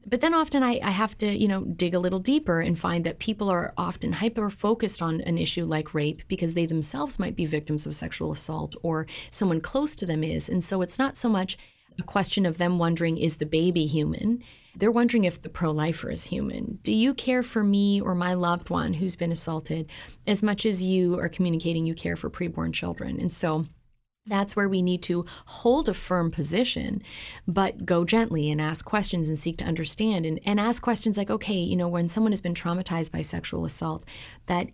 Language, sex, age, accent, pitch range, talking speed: English, female, 30-49, American, 160-210 Hz, 215 wpm